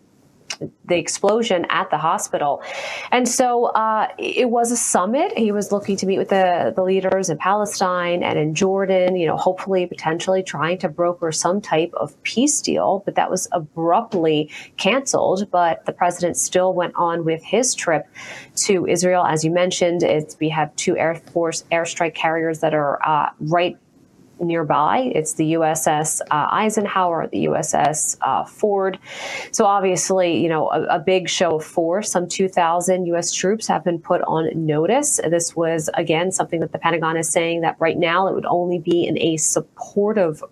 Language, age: English, 30-49